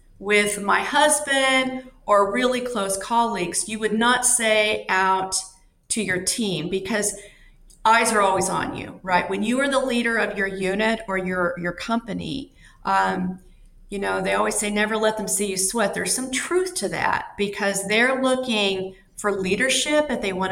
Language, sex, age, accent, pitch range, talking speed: English, female, 40-59, American, 190-245 Hz, 175 wpm